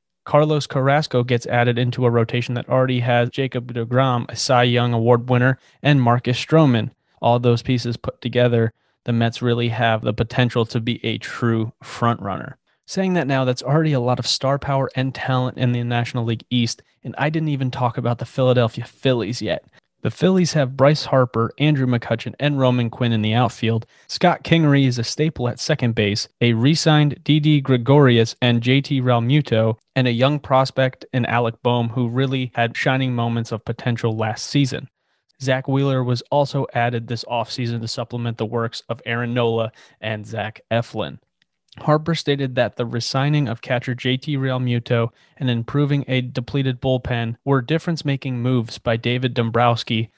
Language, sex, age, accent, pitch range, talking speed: English, male, 30-49, American, 115-135 Hz, 175 wpm